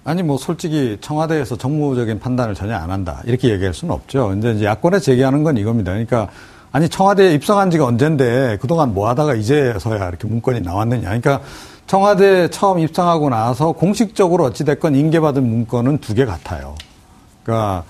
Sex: male